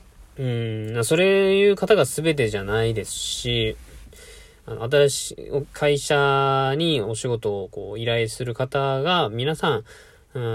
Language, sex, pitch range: Japanese, male, 110-145 Hz